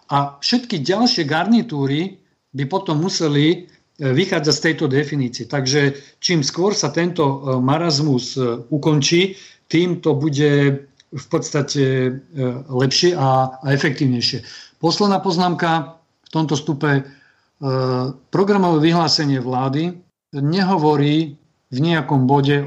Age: 50-69